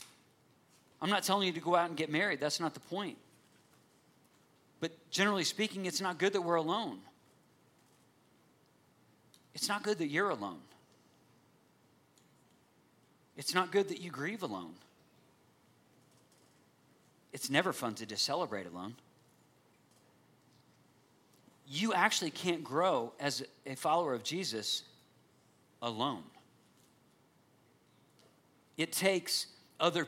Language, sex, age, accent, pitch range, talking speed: English, male, 40-59, American, 140-170 Hz, 110 wpm